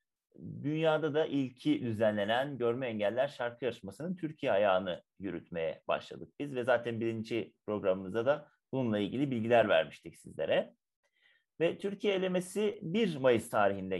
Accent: native